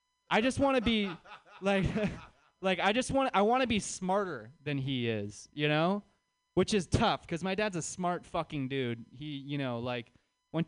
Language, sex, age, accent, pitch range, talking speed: English, male, 20-39, American, 140-205 Hz, 190 wpm